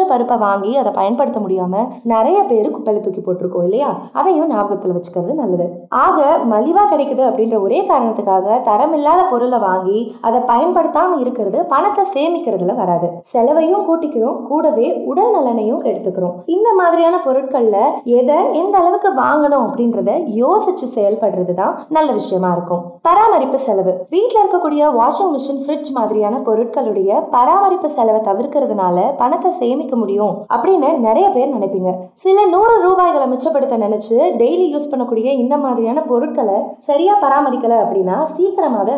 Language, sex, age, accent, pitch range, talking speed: Tamil, female, 20-39, native, 210-315 Hz, 50 wpm